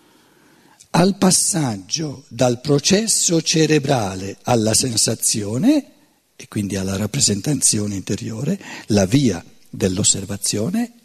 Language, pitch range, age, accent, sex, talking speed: Italian, 120-180 Hz, 60-79, native, male, 80 wpm